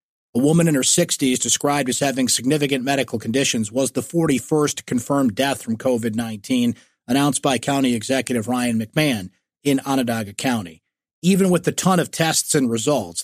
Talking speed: 160 wpm